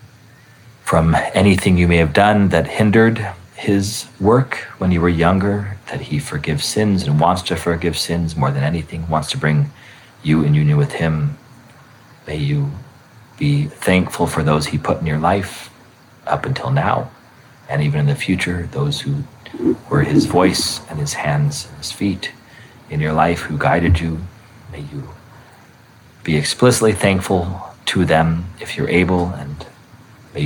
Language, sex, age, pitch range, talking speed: English, male, 40-59, 80-125 Hz, 160 wpm